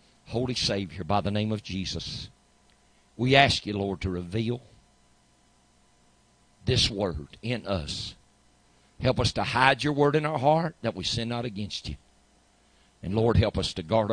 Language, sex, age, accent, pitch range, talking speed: English, male, 50-69, American, 85-115 Hz, 160 wpm